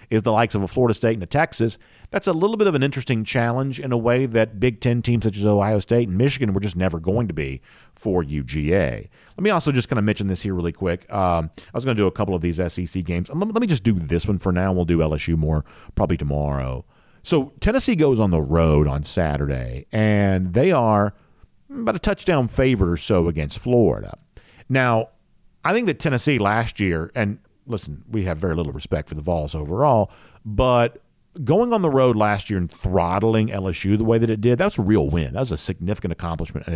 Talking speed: 225 wpm